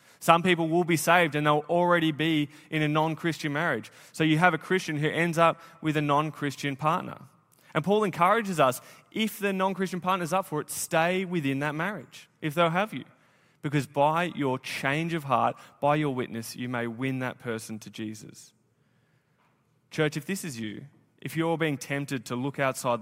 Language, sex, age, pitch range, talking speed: English, male, 20-39, 120-155 Hz, 190 wpm